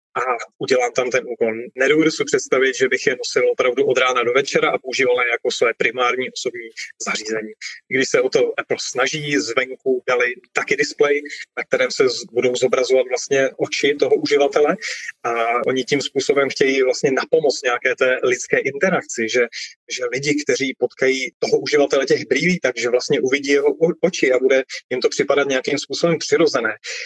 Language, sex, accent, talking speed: Czech, male, native, 170 wpm